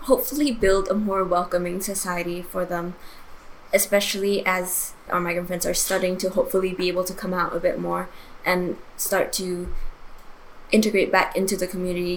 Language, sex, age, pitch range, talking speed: English, female, 10-29, 180-200 Hz, 165 wpm